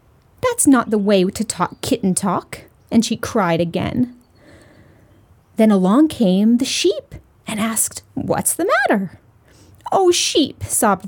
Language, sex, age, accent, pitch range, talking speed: English, female, 30-49, American, 200-325 Hz, 135 wpm